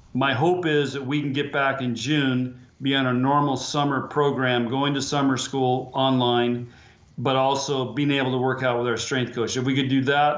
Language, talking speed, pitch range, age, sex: English, 215 wpm, 125-140 Hz, 40-59, male